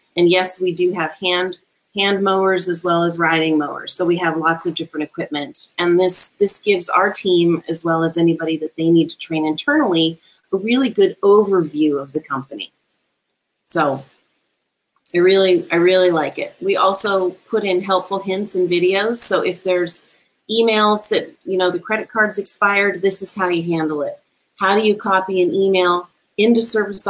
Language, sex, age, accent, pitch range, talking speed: English, female, 30-49, American, 165-200 Hz, 185 wpm